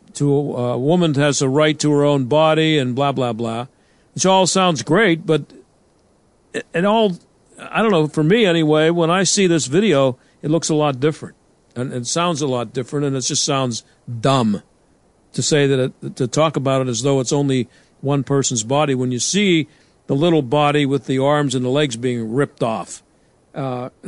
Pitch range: 130-160 Hz